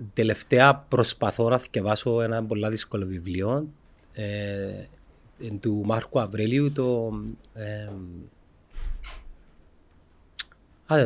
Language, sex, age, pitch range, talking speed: Greek, male, 30-49, 100-125 Hz, 70 wpm